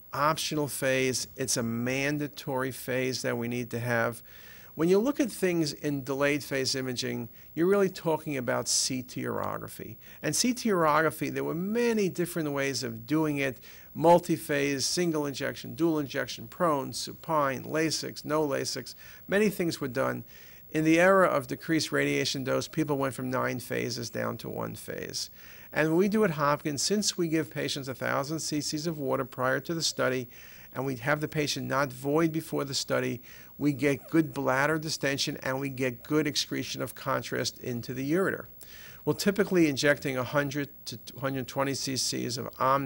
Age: 50-69